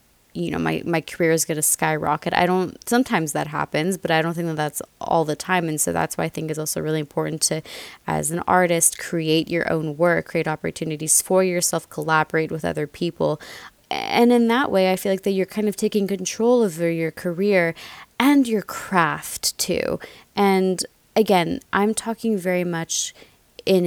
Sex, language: female, English